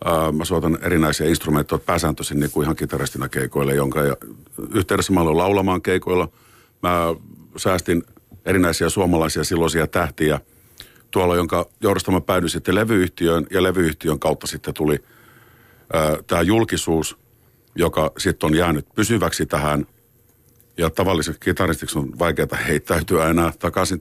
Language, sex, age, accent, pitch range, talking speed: Finnish, male, 50-69, native, 80-95 Hz, 125 wpm